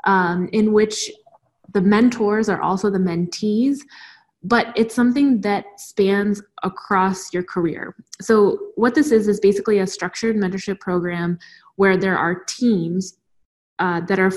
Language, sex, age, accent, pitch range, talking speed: English, female, 20-39, American, 185-220 Hz, 140 wpm